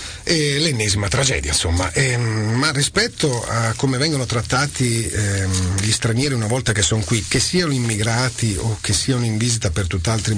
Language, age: Italian, 40-59